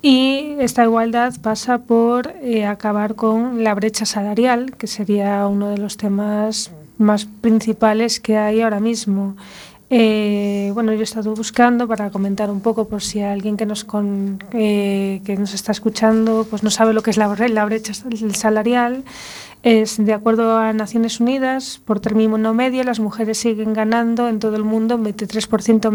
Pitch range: 210-230 Hz